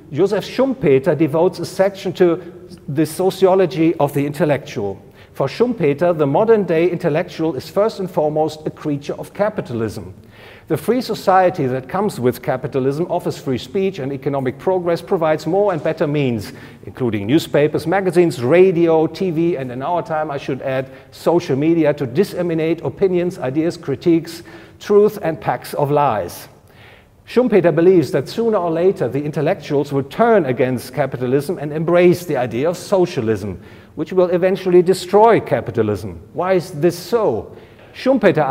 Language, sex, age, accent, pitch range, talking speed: English, male, 50-69, German, 140-185 Hz, 145 wpm